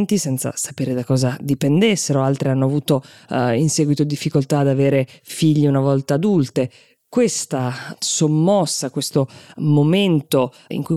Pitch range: 130-160 Hz